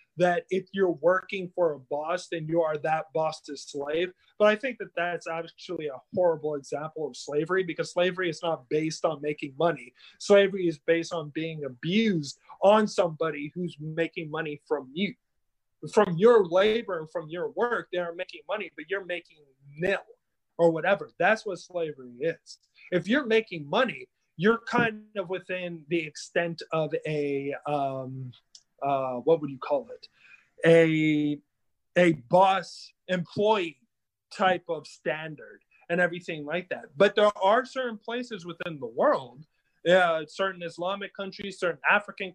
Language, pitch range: English, 155-195 Hz